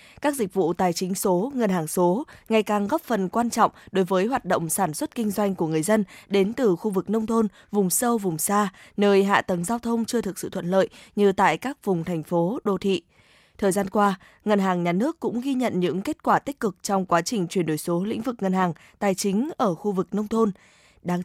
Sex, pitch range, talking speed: female, 180-220 Hz, 245 wpm